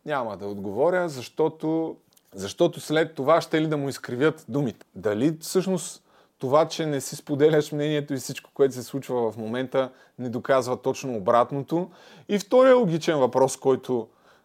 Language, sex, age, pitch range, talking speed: Bulgarian, male, 30-49, 130-165 Hz, 155 wpm